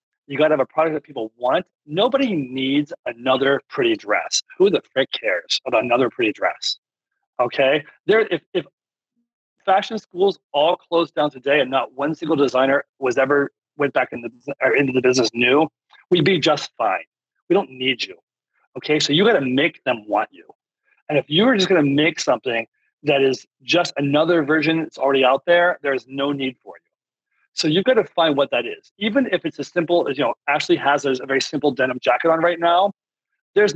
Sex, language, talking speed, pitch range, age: male, English, 200 wpm, 135-175 Hz, 40-59